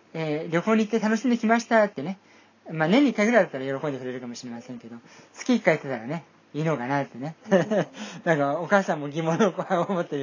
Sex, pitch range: male, 135-200 Hz